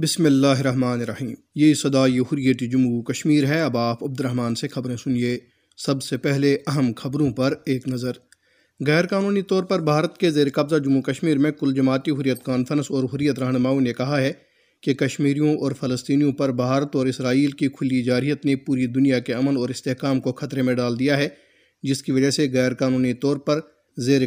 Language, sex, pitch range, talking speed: Urdu, male, 130-155 Hz, 195 wpm